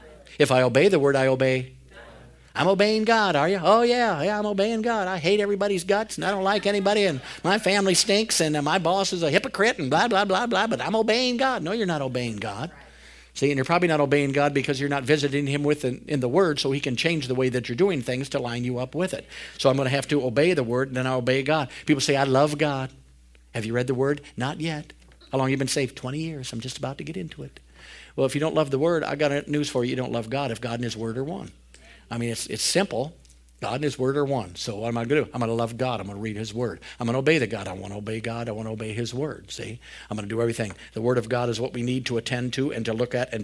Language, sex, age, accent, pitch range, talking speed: English, male, 50-69, American, 120-155 Hz, 295 wpm